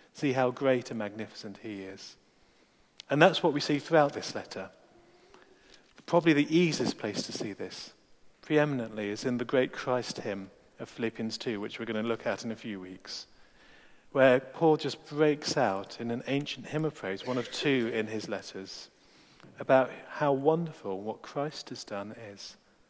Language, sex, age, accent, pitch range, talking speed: English, male, 40-59, British, 115-155 Hz, 175 wpm